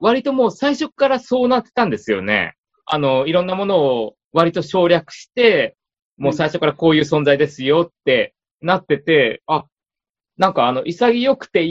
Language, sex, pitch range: Japanese, male, 140-235 Hz